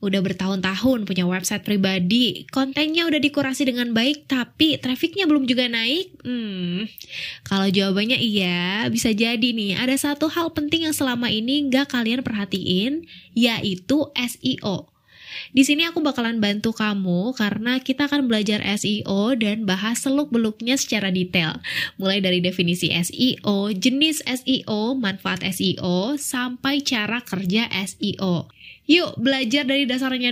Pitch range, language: 200-270 Hz, Indonesian